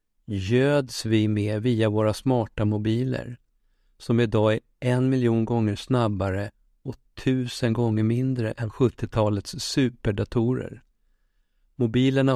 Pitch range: 105-125 Hz